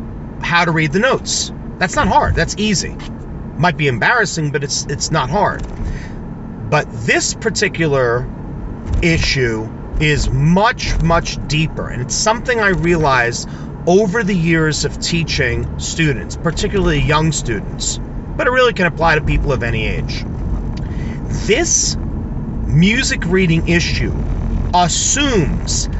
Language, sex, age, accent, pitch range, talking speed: English, male, 40-59, American, 125-180 Hz, 125 wpm